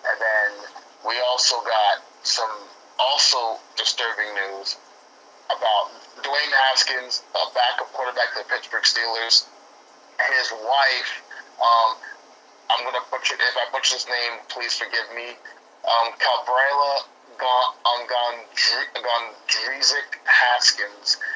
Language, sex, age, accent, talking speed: English, male, 30-49, American, 105 wpm